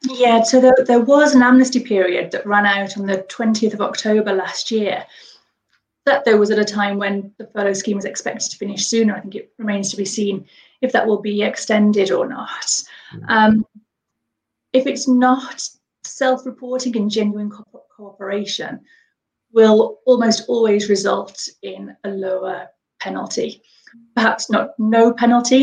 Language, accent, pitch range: English, British, 200-230 Hz